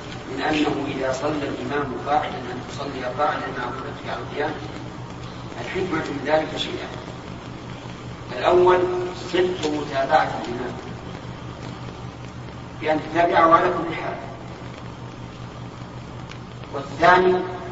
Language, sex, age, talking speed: Arabic, male, 40-59, 90 wpm